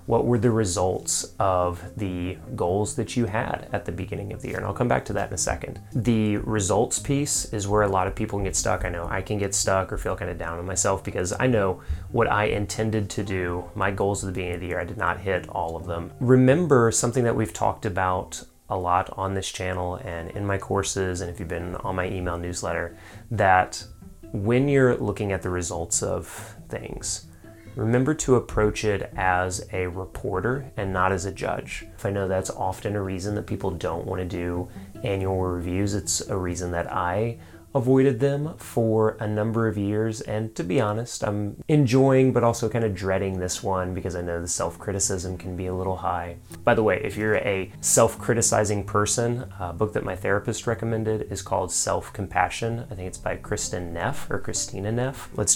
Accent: American